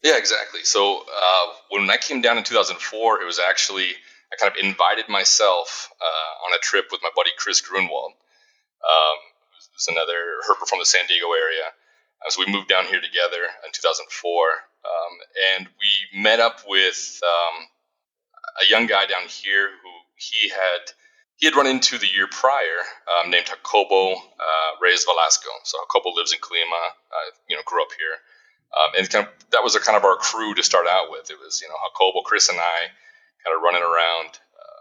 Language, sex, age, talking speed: English, male, 30-49, 190 wpm